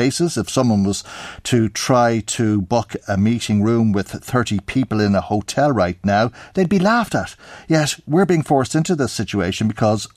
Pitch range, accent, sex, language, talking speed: 95-120 Hz, Irish, male, English, 175 wpm